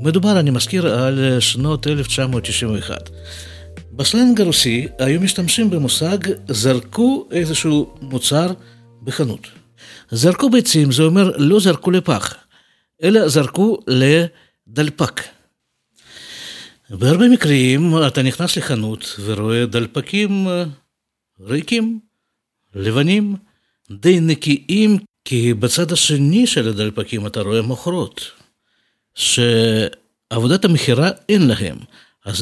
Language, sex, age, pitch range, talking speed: Hebrew, male, 50-69, 115-175 Hz, 90 wpm